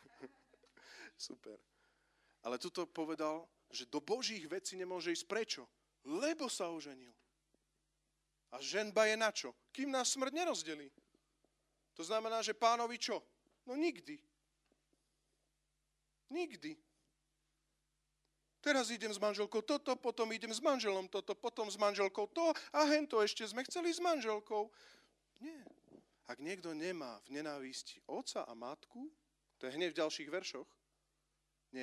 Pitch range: 135-225 Hz